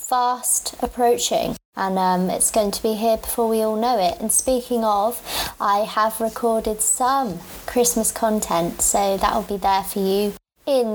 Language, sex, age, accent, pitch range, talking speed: English, female, 20-39, British, 195-235 Hz, 170 wpm